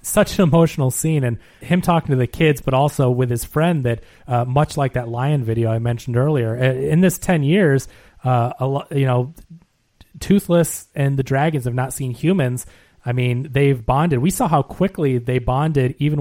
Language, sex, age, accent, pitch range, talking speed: English, male, 30-49, American, 120-150 Hz, 195 wpm